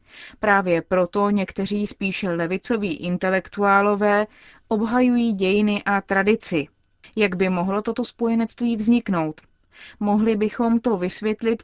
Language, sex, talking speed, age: Czech, female, 105 wpm, 30-49